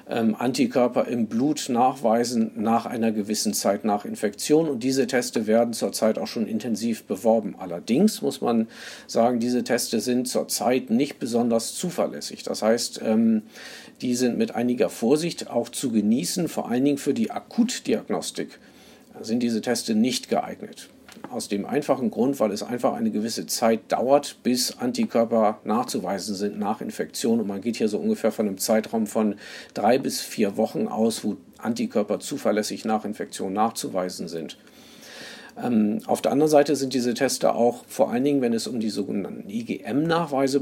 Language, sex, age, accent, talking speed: German, male, 50-69, German, 160 wpm